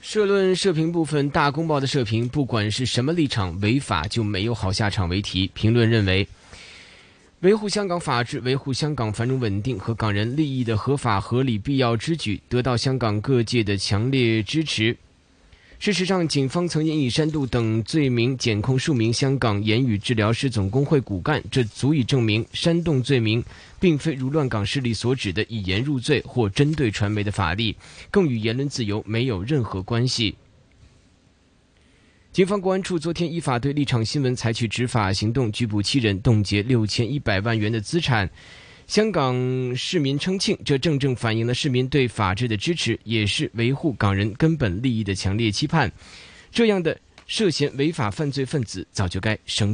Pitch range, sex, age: 110-145 Hz, male, 20-39